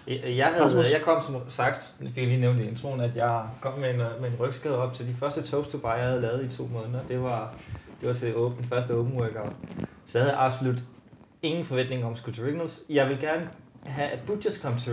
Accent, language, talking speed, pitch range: native, Danish, 245 wpm, 115-140 Hz